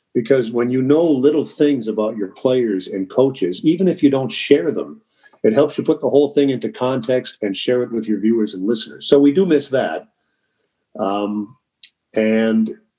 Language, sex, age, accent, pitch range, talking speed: English, male, 50-69, American, 110-135 Hz, 190 wpm